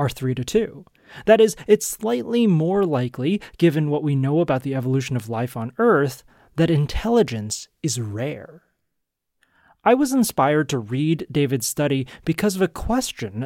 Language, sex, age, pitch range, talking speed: English, male, 30-49, 135-205 Hz, 160 wpm